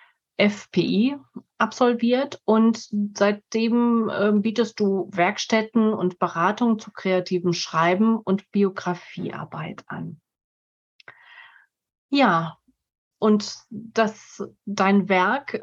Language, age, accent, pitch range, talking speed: German, 30-49, German, 190-230 Hz, 75 wpm